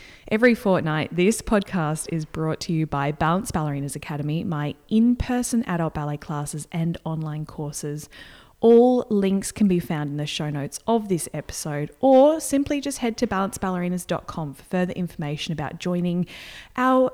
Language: English